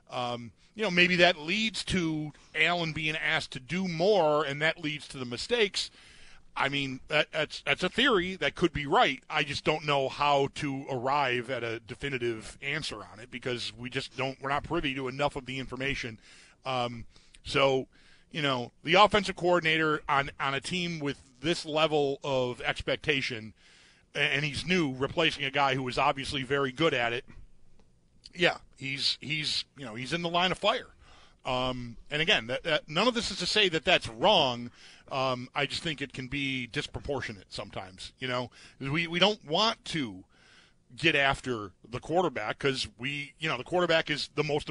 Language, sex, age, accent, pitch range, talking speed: English, male, 40-59, American, 130-160 Hz, 185 wpm